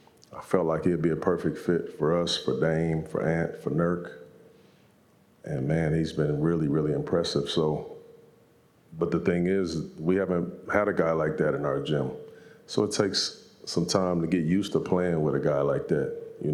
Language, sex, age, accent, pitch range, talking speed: English, male, 40-59, American, 80-85 Hz, 195 wpm